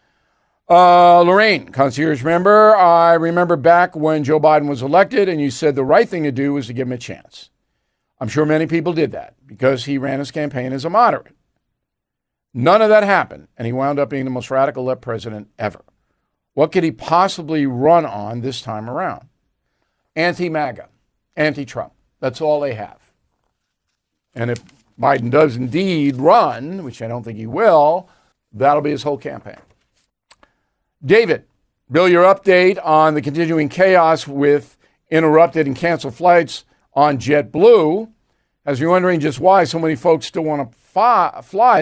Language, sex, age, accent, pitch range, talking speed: English, male, 50-69, American, 140-175 Hz, 165 wpm